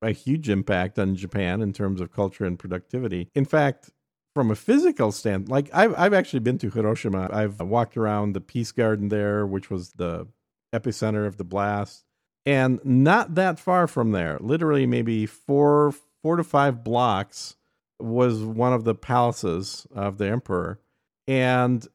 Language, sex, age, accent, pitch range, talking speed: English, male, 50-69, American, 105-140 Hz, 165 wpm